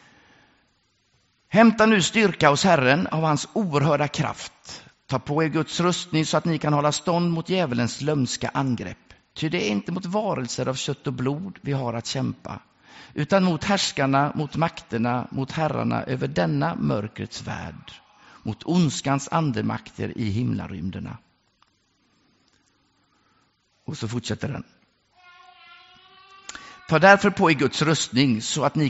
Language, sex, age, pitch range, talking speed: English, male, 50-69, 125-170 Hz, 140 wpm